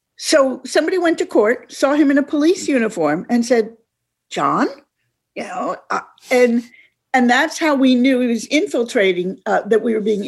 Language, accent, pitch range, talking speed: English, American, 215-285 Hz, 180 wpm